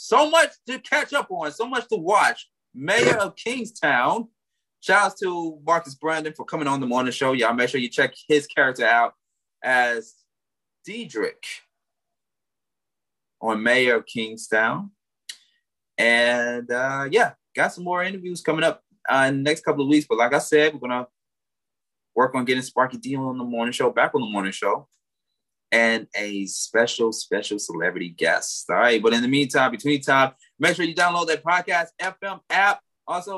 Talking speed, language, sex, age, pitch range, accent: 175 wpm, English, male, 20-39, 125-160 Hz, American